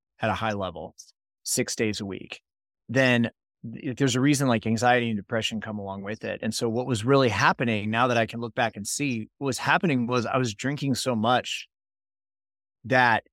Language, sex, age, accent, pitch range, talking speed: English, male, 30-49, American, 110-135 Hz, 200 wpm